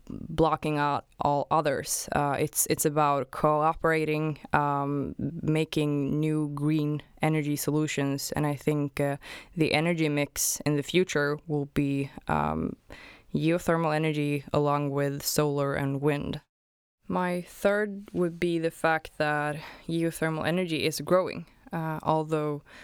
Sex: female